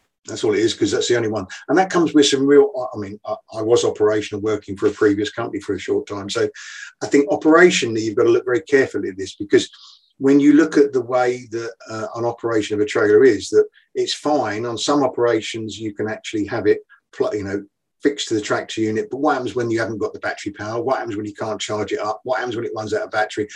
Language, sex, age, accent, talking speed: English, male, 50-69, British, 255 wpm